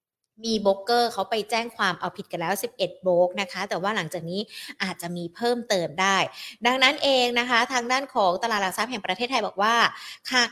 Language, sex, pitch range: Thai, female, 185-250 Hz